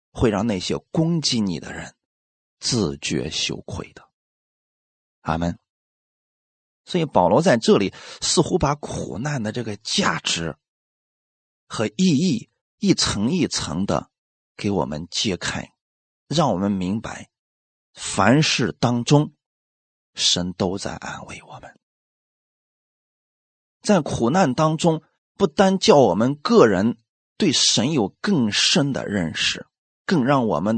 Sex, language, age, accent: male, Chinese, 30-49, native